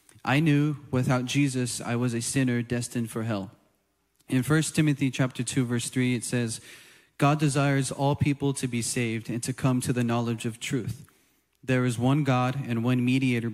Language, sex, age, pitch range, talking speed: English, male, 20-39, 120-140 Hz, 185 wpm